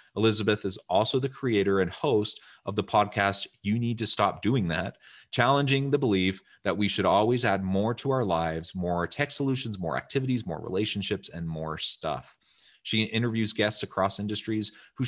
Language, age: English, 30-49